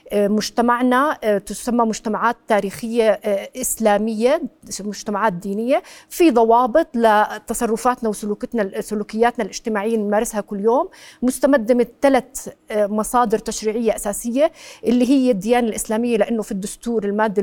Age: 40-59